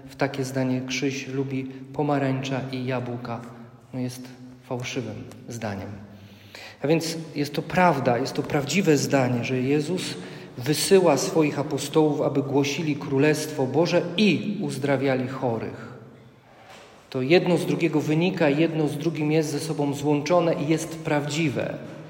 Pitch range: 130-155 Hz